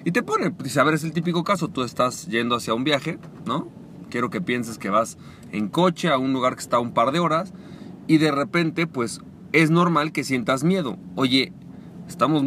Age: 40-59